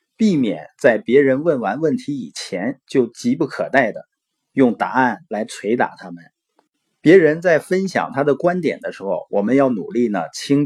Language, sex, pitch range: Chinese, male, 130-185 Hz